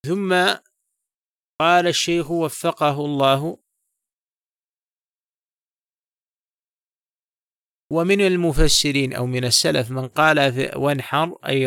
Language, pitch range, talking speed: Arabic, 135-160 Hz, 70 wpm